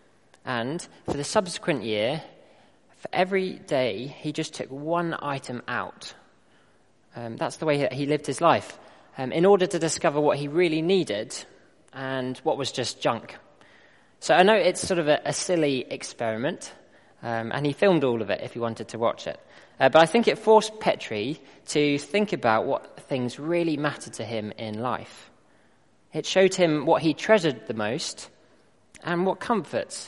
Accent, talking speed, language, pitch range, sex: British, 180 wpm, English, 125-175 Hz, male